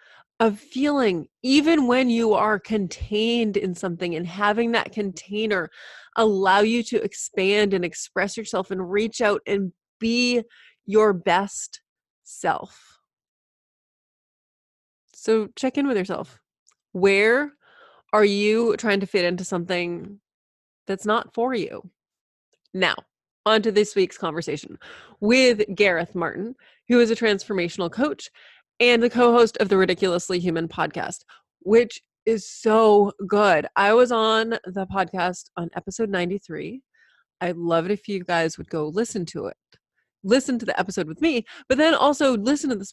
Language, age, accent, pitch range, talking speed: English, 20-39, American, 185-230 Hz, 145 wpm